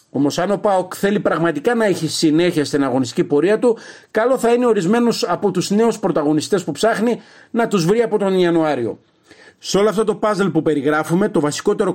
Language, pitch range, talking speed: Greek, 155-210 Hz, 190 wpm